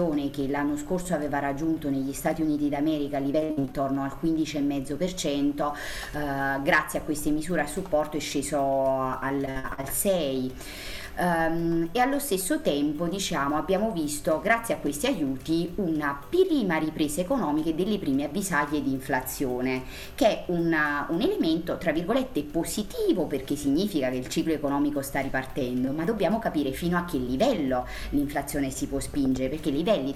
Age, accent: 30-49, native